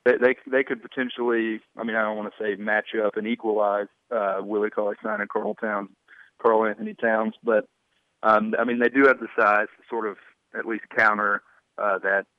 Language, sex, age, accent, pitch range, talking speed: English, male, 30-49, American, 110-125 Hz, 205 wpm